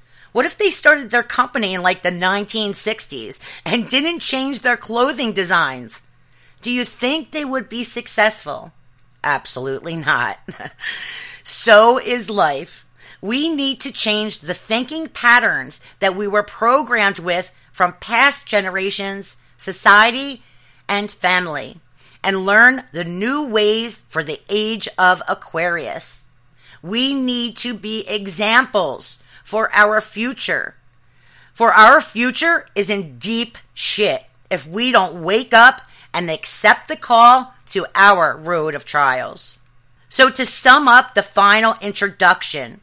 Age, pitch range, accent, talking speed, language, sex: 30-49, 180-240 Hz, American, 130 wpm, English, female